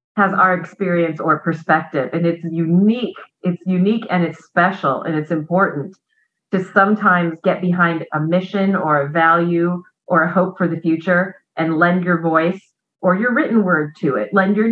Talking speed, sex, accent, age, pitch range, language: 175 wpm, female, American, 40-59, 165-205 Hz, English